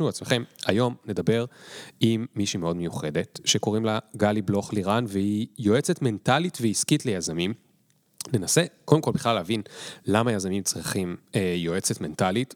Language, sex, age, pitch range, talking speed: Hebrew, male, 30-49, 100-125 Hz, 130 wpm